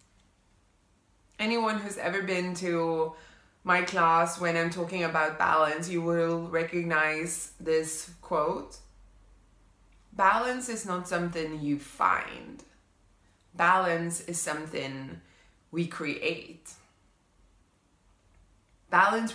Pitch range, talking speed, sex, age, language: 140-180 Hz, 90 wpm, female, 20-39, English